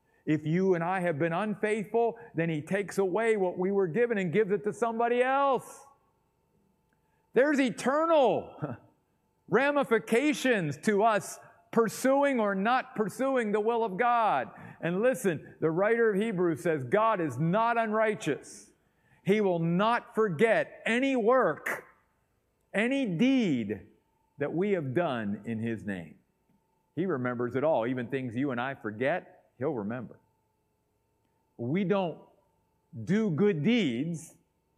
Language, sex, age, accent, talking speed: English, male, 50-69, American, 135 wpm